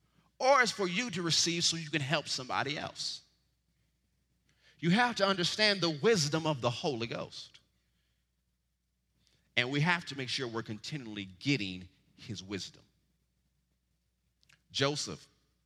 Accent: American